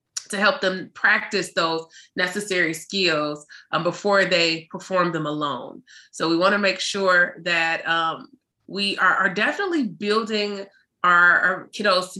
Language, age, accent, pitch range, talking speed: English, 30-49, American, 165-195 Hz, 145 wpm